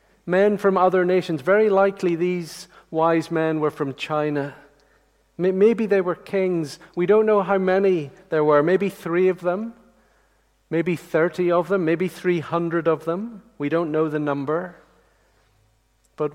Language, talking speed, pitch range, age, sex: English, 150 wpm, 150-185 Hz, 50-69, male